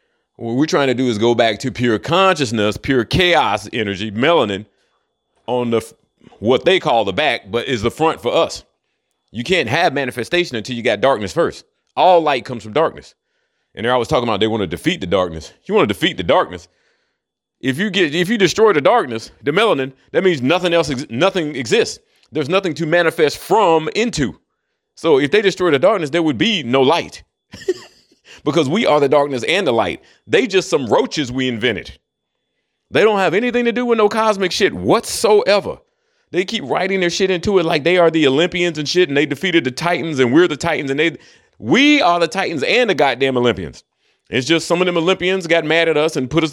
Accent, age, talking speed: American, 30-49, 215 wpm